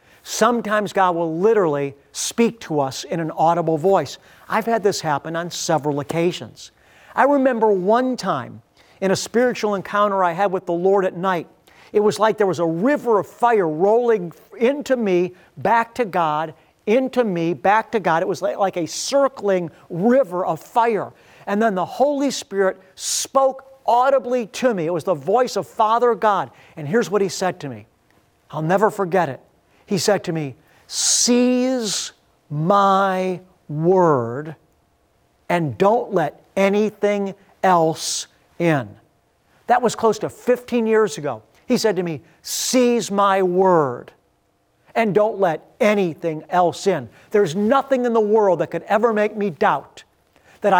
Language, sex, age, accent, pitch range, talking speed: English, male, 50-69, American, 165-220 Hz, 155 wpm